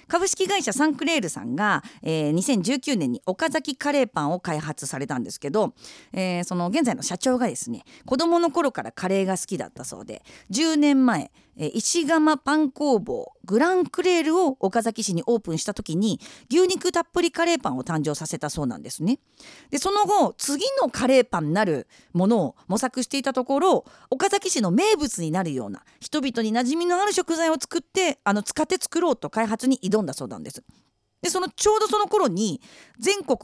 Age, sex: 40-59, female